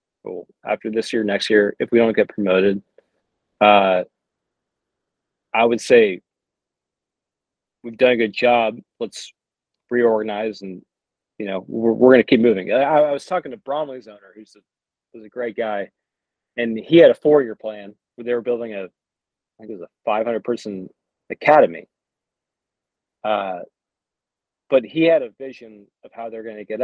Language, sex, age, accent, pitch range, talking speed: English, male, 40-59, American, 105-125 Hz, 165 wpm